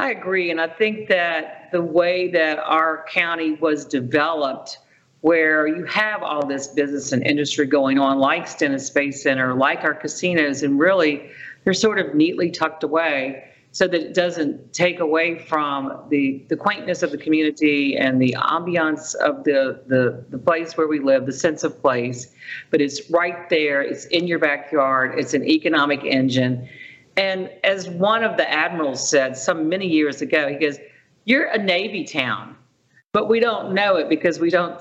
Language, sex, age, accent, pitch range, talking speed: English, female, 50-69, American, 140-175 Hz, 180 wpm